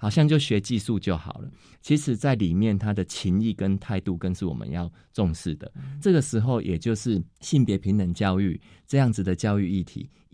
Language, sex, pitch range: Chinese, male, 85-115 Hz